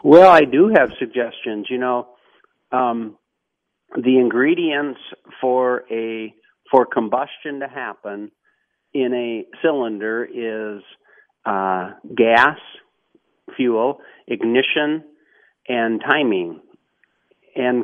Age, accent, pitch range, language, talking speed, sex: 50-69, American, 105-125 Hz, English, 90 wpm, male